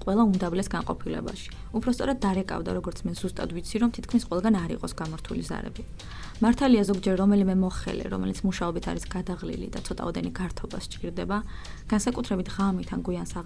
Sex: female